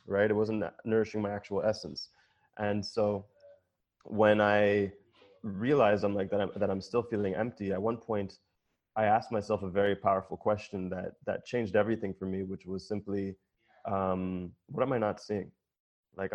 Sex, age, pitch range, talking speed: male, 20-39, 95-110 Hz, 175 wpm